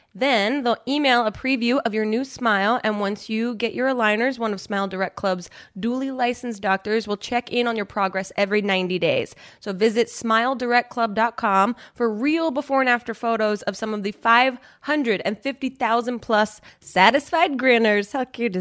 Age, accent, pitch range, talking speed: 20-39, American, 210-280 Hz, 165 wpm